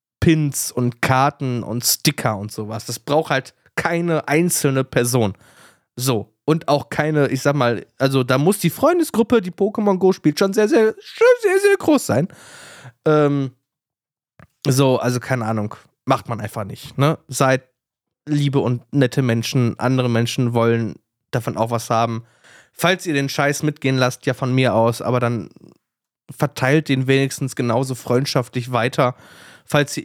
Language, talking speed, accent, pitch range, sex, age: German, 160 wpm, German, 120-155 Hz, male, 20-39